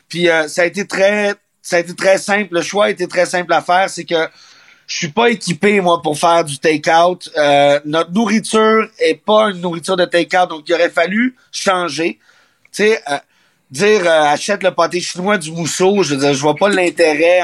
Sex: male